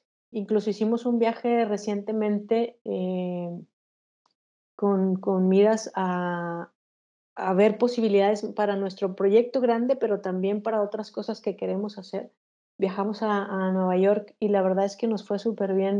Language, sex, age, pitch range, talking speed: Spanish, female, 30-49, 195-220 Hz, 145 wpm